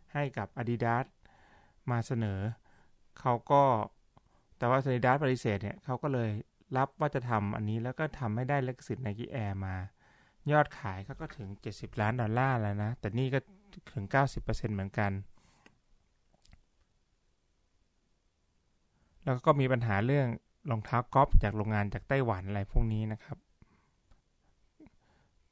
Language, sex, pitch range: Thai, male, 100-130 Hz